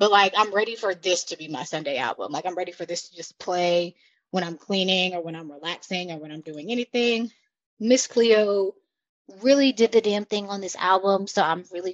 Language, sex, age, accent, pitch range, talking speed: English, female, 20-39, American, 180-235 Hz, 220 wpm